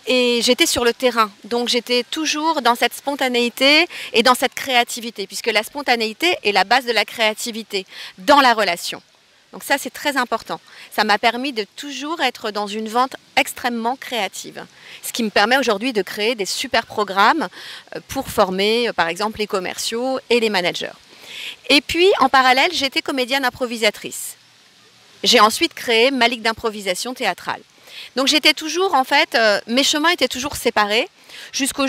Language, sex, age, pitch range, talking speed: English, female, 40-59, 220-280 Hz, 165 wpm